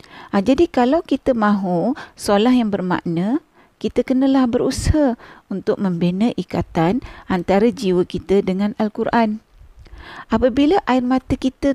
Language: Malay